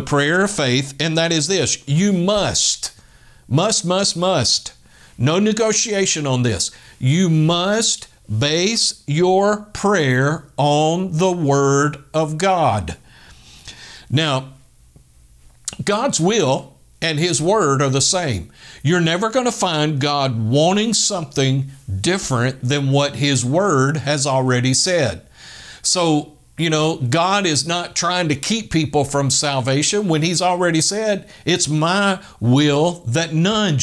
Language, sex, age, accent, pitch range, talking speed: English, male, 60-79, American, 140-185 Hz, 130 wpm